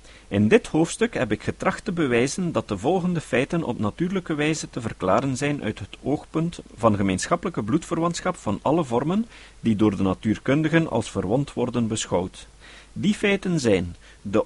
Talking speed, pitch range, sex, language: 160 wpm, 105-170 Hz, male, Dutch